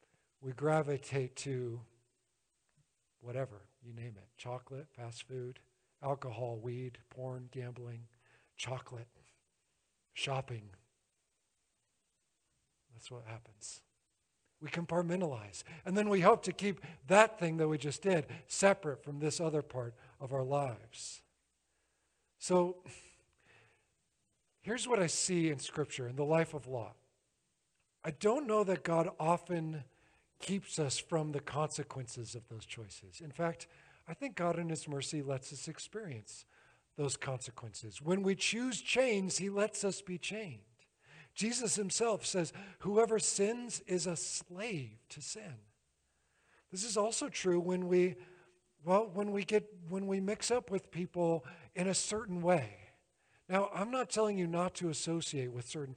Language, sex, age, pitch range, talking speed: English, male, 50-69, 125-180 Hz, 140 wpm